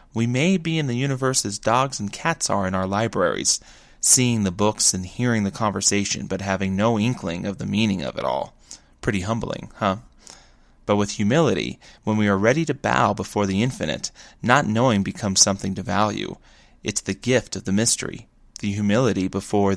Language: English